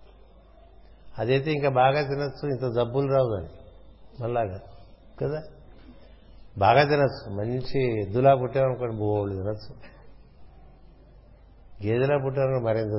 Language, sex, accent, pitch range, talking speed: Telugu, male, native, 115-150 Hz, 90 wpm